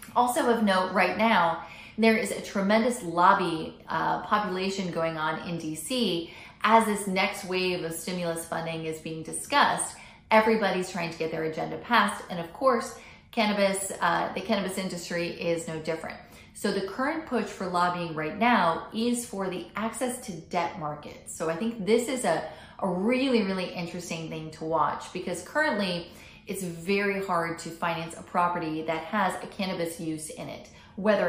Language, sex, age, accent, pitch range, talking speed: English, female, 30-49, American, 170-220 Hz, 170 wpm